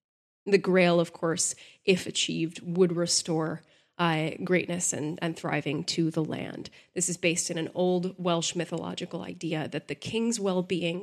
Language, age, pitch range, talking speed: English, 20-39, 165-195 Hz, 160 wpm